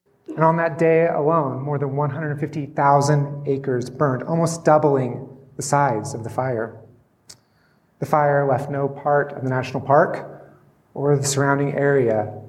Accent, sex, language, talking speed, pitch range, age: American, male, English, 145 wpm, 130-150 Hz, 30-49